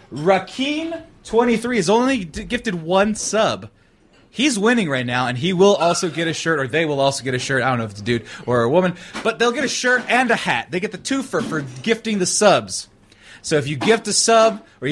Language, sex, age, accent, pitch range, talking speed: English, male, 20-39, American, 140-200 Hz, 235 wpm